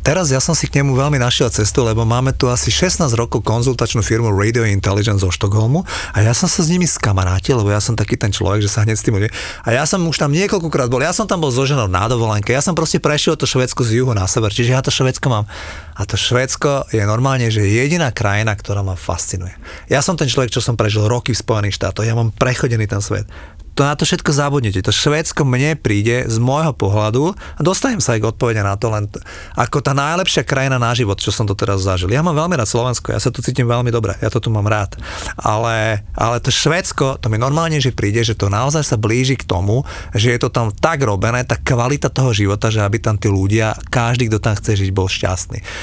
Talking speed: 240 wpm